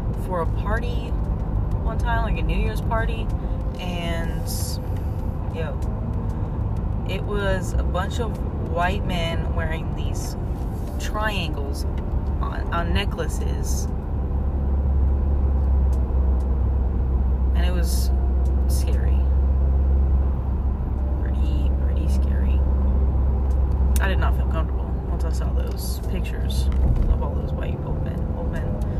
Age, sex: 20-39, female